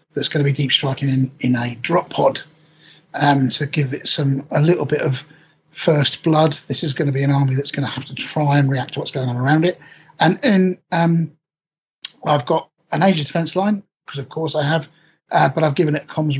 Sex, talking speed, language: male, 230 wpm, English